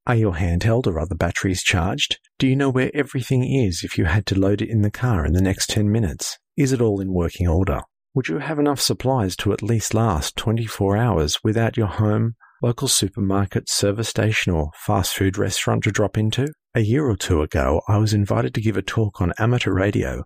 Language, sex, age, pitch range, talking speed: English, male, 50-69, 95-120 Hz, 215 wpm